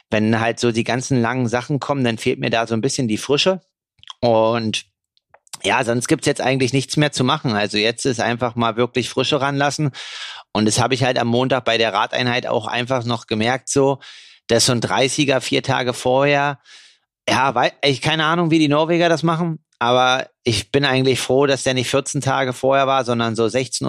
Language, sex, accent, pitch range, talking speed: German, male, German, 115-135 Hz, 210 wpm